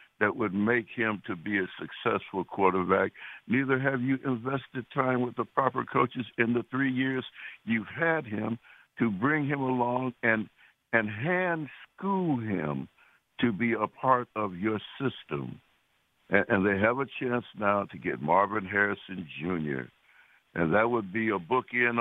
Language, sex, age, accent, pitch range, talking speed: English, male, 60-79, American, 100-130 Hz, 165 wpm